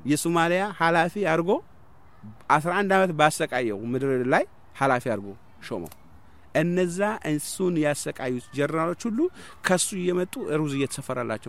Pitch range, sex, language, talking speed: 110-175 Hz, male, English, 140 wpm